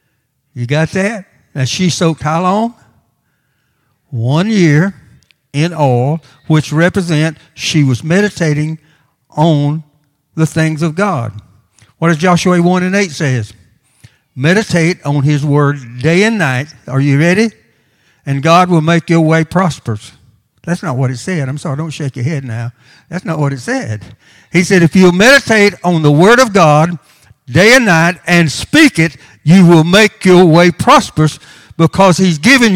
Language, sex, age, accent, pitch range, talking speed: English, male, 60-79, American, 135-185 Hz, 160 wpm